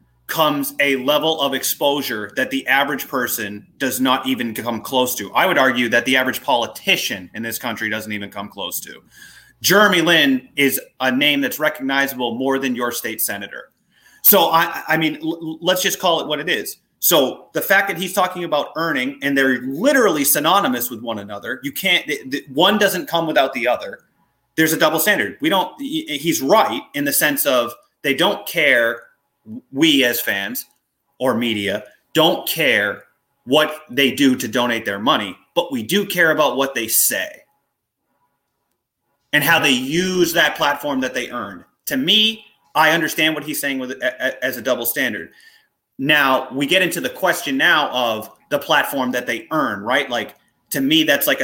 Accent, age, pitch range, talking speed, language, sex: American, 30-49, 120-185 Hz, 185 wpm, English, male